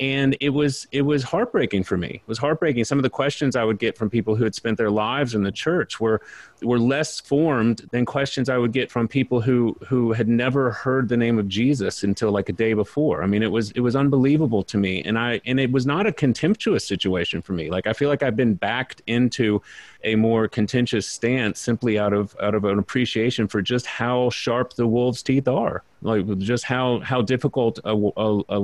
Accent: American